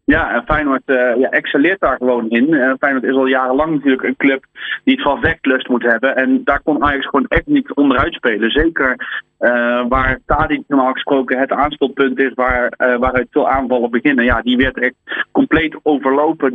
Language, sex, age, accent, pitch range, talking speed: Dutch, male, 30-49, Dutch, 125-155 Hz, 190 wpm